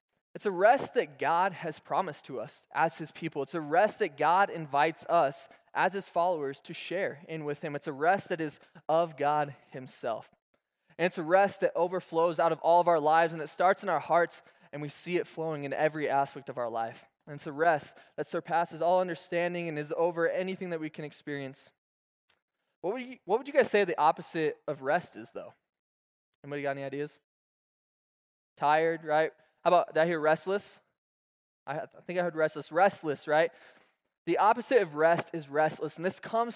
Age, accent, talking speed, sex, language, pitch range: 20-39, American, 200 wpm, male, English, 150-180 Hz